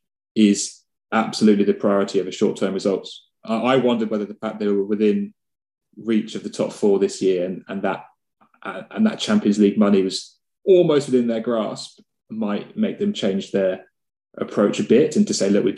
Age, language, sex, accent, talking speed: 20-39, English, male, British, 185 wpm